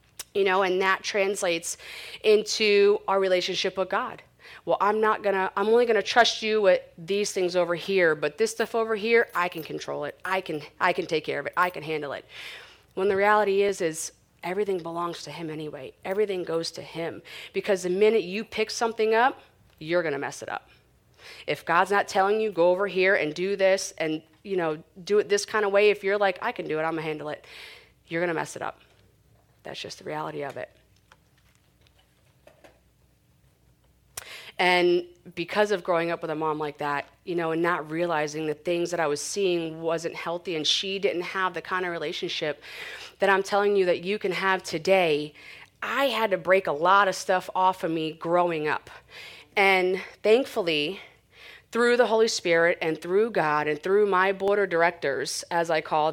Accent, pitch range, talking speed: American, 165-200 Hz, 200 wpm